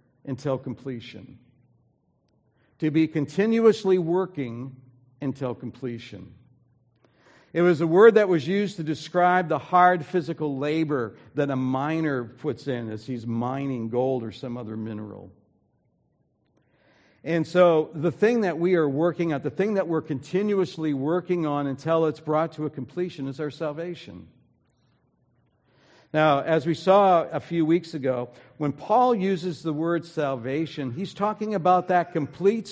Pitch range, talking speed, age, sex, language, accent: 130-170 Hz, 145 wpm, 60-79, male, English, American